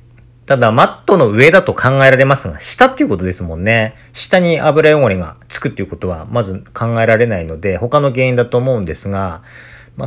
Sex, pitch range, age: male, 100-140 Hz, 40-59